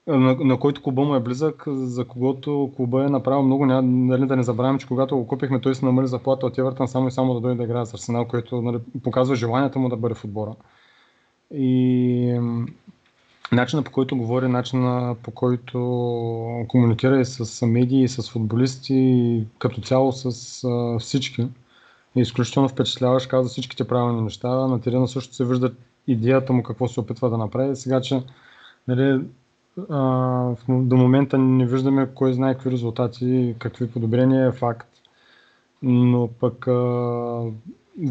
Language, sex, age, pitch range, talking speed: Bulgarian, male, 20-39, 125-135 Hz, 165 wpm